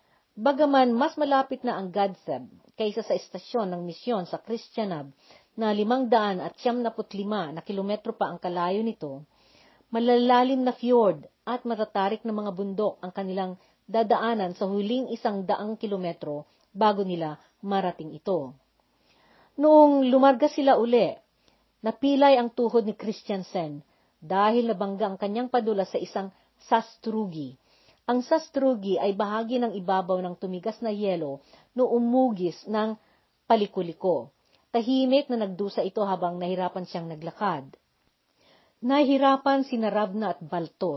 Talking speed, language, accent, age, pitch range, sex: 125 wpm, Filipino, native, 40-59, 185-235 Hz, female